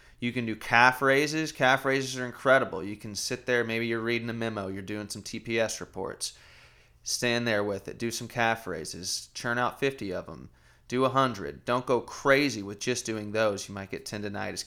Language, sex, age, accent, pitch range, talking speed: English, male, 30-49, American, 105-130 Hz, 200 wpm